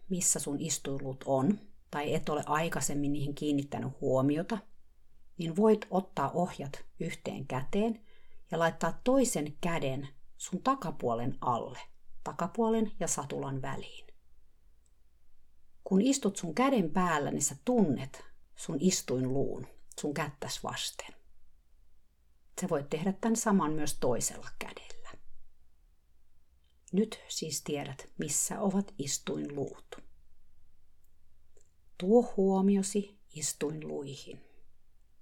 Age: 50-69